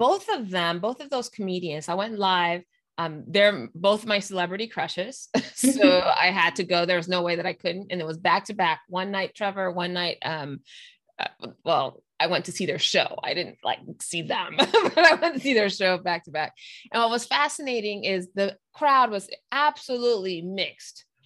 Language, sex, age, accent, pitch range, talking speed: English, female, 20-39, American, 180-225 Hz, 205 wpm